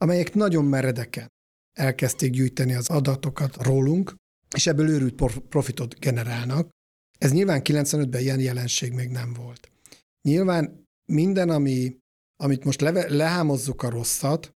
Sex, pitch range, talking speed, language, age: male, 130-150 Hz, 125 wpm, Hungarian, 50-69